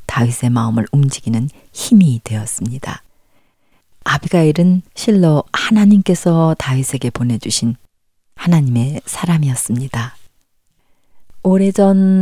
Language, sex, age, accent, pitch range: Korean, female, 40-59, native, 115-165 Hz